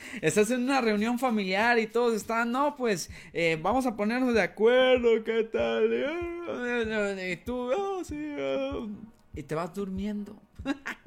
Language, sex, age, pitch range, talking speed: Spanish, male, 20-39, 145-220 Hz, 140 wpm